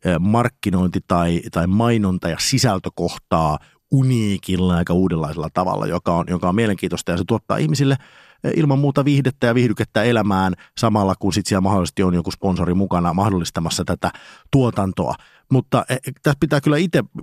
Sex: male